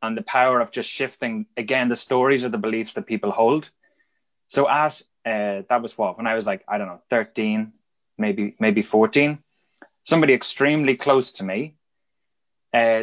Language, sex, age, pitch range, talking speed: English, male, 20-39, 105-140 Hz, 175 wpm